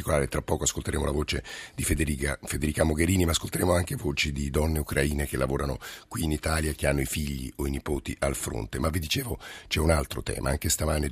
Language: Italian